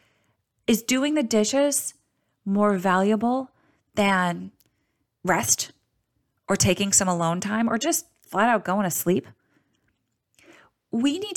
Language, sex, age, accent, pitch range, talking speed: English, female, 20-39, American, 160-225 Hz, 115 wpm